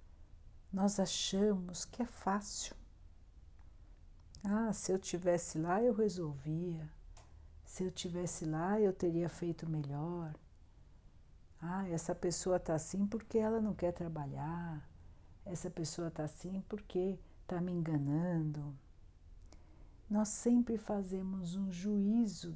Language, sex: Portuguese, female